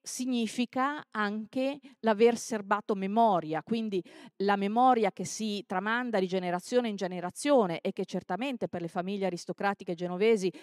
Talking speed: 130 wpm